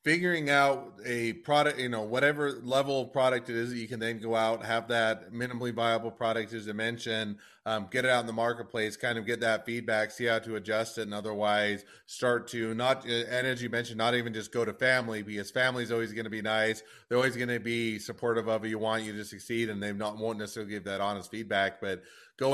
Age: 30-49